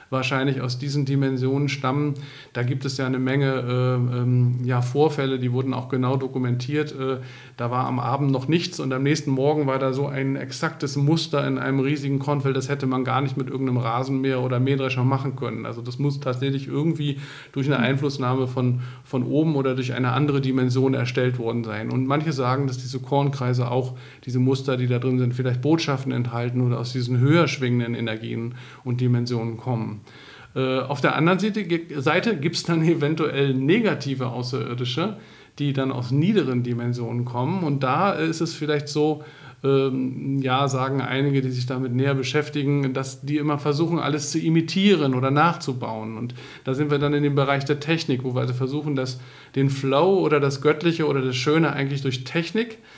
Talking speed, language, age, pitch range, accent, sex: 180 wpm, German, 50-69, 125-145 Hz, German, male